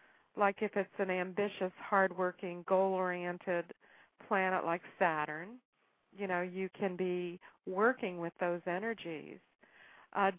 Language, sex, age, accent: English, female, 50-69, American